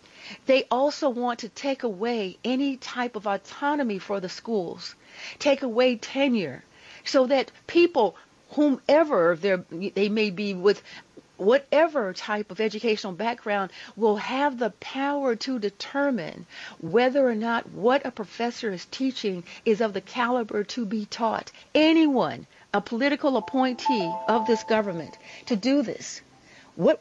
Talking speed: 135 wpm